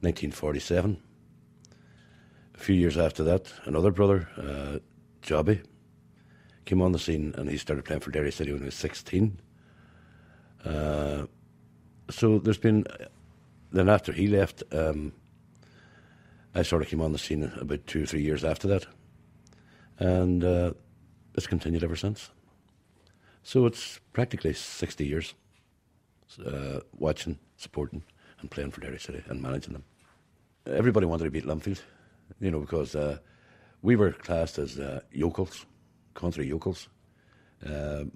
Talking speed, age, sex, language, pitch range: 140 wpm, 60-79, male, English, 75-100 Hz